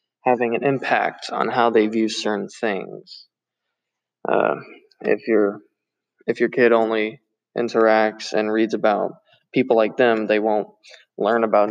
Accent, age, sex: American, 20-39, male